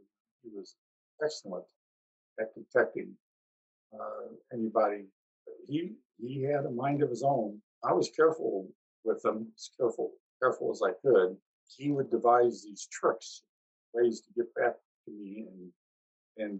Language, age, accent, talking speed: English, 50-69, American, 140 wpm